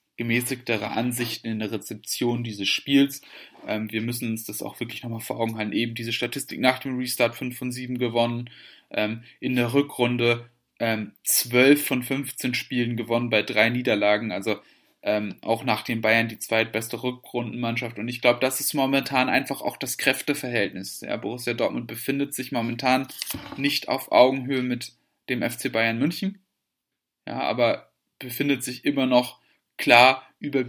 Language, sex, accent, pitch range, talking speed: German, male, German, 115-130 Hz, 160 wpm